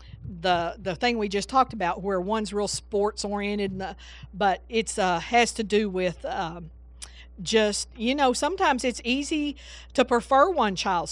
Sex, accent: female, American